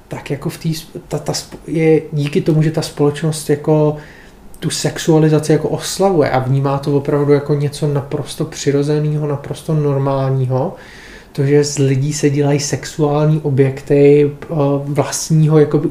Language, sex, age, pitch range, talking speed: Czech, male, 30-49, 135-150 Hz, 135 wpm